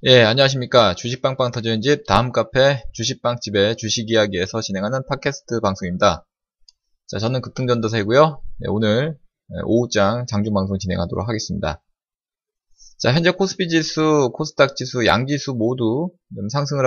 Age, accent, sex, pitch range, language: 20-39, native, male, 110-150 Hz, Korean